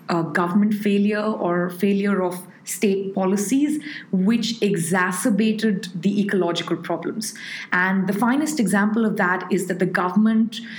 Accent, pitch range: Indian, 185-225 Hz